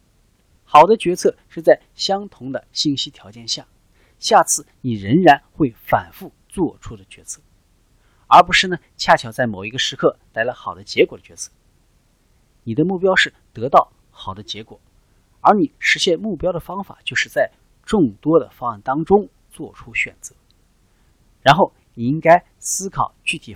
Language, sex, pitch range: Chinese, male, 105-160 Hz